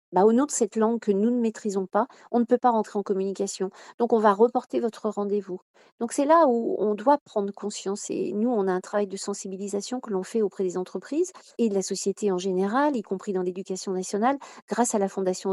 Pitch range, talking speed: 195-240 Hz, 235 wpm